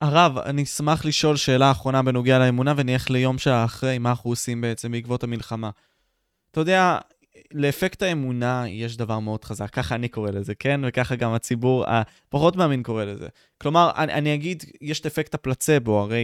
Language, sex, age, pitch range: Hebrew, male, 20-39, 115-160 Hz